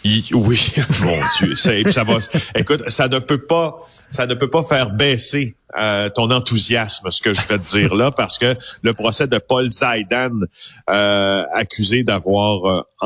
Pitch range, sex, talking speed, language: 100-125 Hz, male, 175 wpm, French